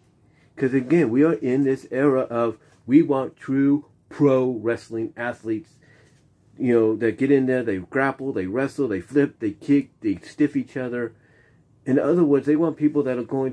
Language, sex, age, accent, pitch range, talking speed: English, male, 40-59, American, 115-145 Hz, 180 wpm